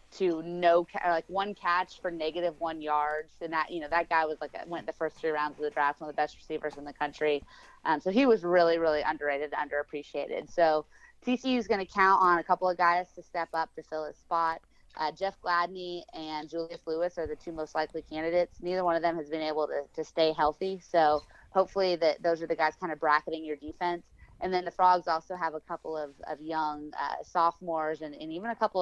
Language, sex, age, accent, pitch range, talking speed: English, female, 20-39, American, 155-175 Hz, 235 wpm